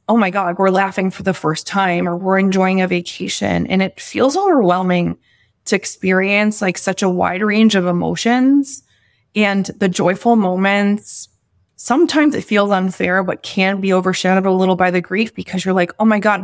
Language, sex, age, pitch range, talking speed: English, female, 20-39, 175-195 Hz, 185 wpm